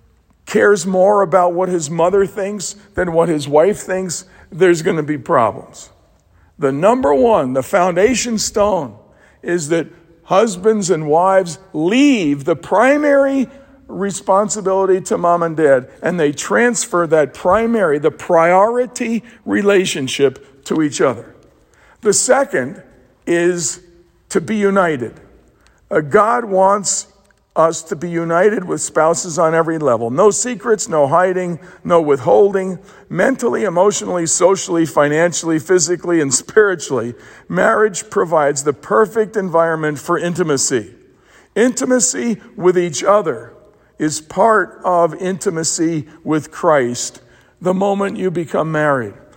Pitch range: 160-205 Hz